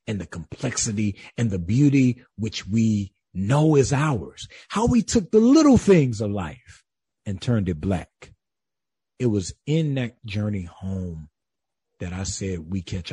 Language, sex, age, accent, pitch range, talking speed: English, male, 40-59, American, 100-135 Hz, 155 wpm